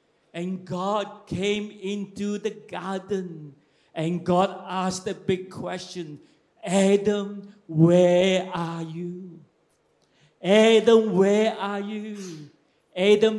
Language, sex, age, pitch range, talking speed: English, male, 40-59, 170-220 Hz, 95 wpm